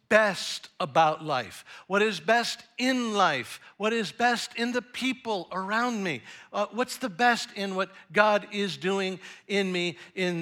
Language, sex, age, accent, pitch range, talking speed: English, male, 60-79, American, 175-245 Hz, 160 wpm